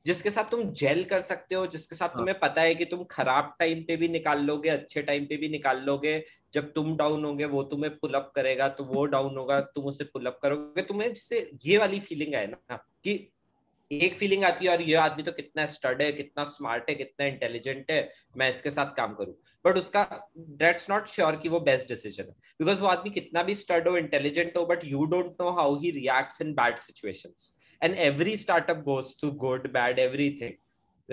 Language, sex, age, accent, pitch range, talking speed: Hindi, male, 20-39, native, 140-175 Hz, 205 wpm